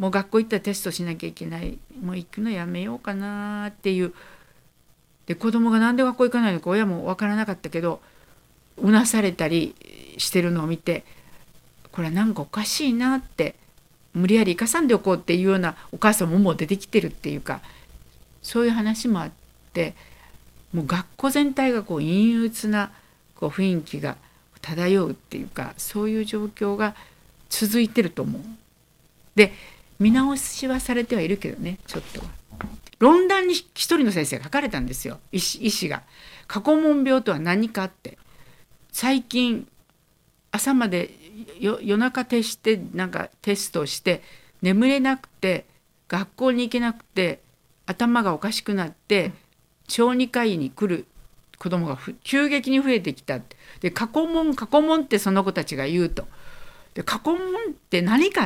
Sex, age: female, 50-69